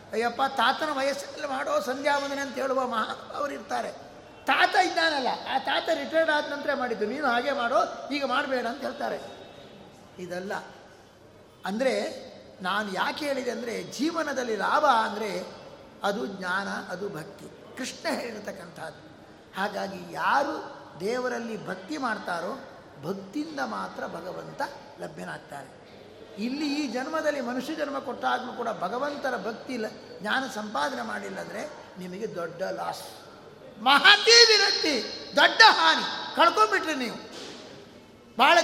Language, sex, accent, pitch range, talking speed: Kannada, male, native, 255-330 Hz, 110 wpm